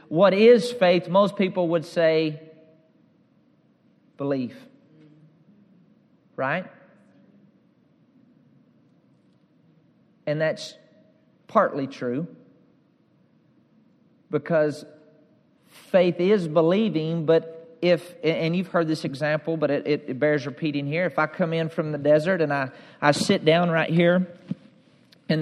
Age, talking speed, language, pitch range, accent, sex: 40-59, 110 wpm, English, 160-200 Hz, American, male